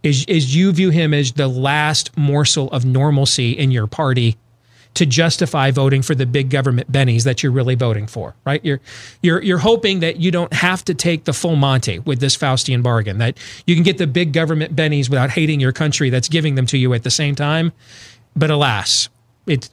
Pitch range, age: 125-175 Hz, 40-59